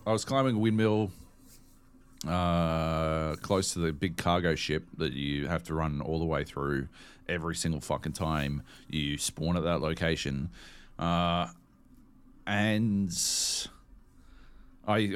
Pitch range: 80-105 Hz